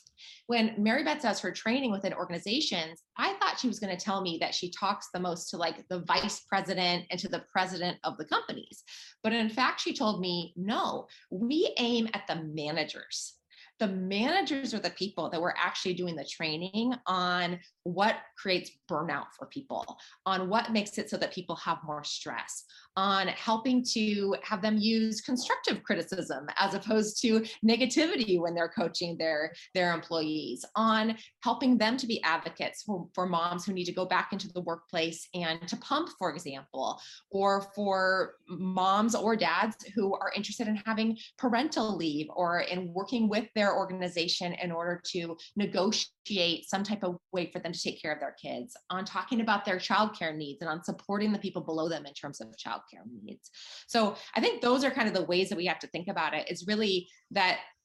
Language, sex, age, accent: English, female, 20-39, American